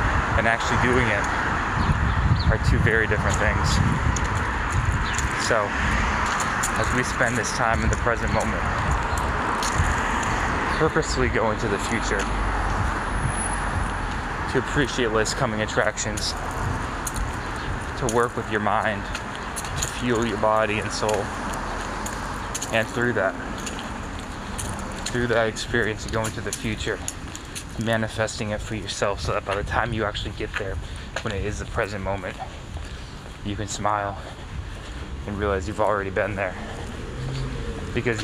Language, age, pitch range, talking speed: English, 20-39, 100-115 Hz, 125 wpm